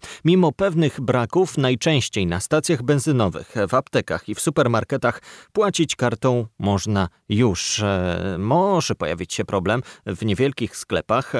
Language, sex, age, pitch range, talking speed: Polish, male, 30-49, 100-130 Hz, 125 wpm